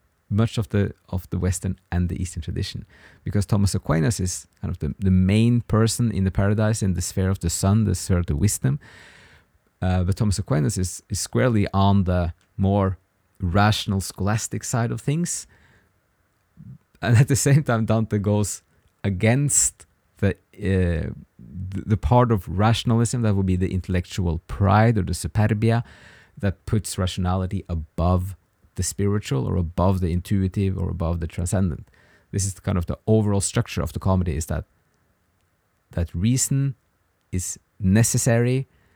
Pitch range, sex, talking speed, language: 90-115 Hz, male, 155 wpm, English